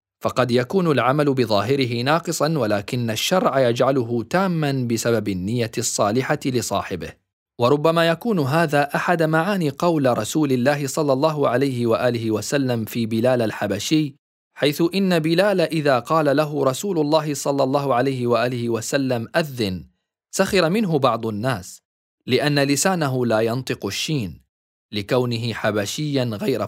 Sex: male